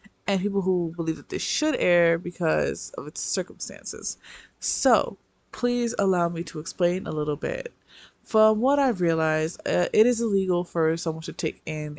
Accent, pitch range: American, 160-215 Hz